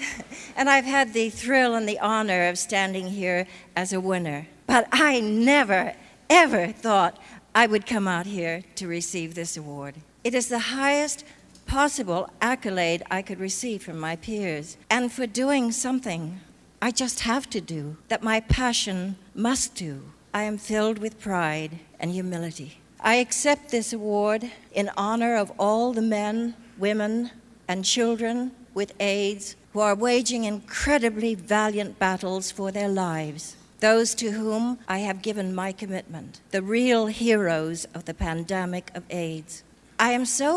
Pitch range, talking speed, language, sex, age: 180-230 Hz, 155 wpm, Persian, female, 60-79